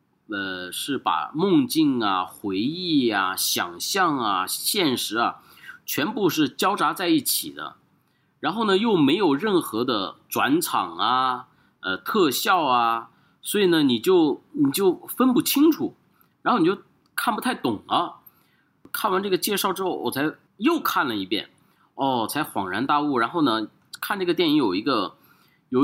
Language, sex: Chinese, male